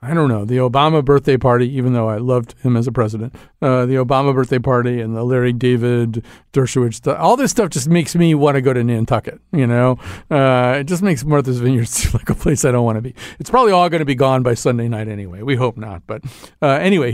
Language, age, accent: English, 50-69, American